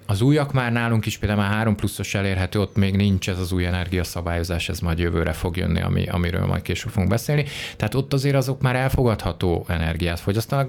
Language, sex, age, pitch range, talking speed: Hungarian, male, 30-49, 90-110 Hz, 200 wpm